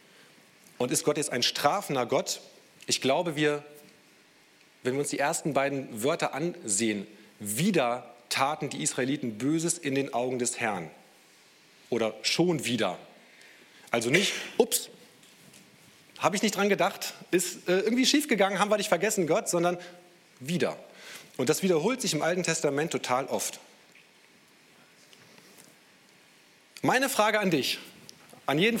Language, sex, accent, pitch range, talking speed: German, male, German, 150-200 Hz, 135 wpm